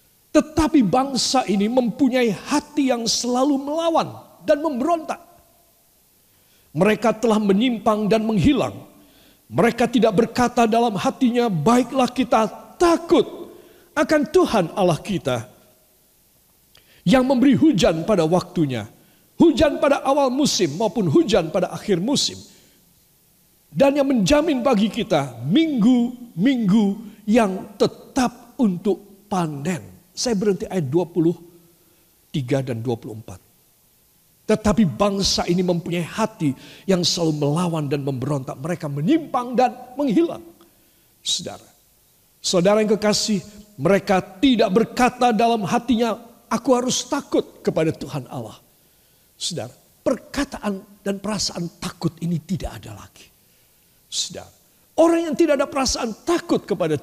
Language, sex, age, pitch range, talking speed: Indonesian, male, 50-69, 175-260 Hz, 110 wpm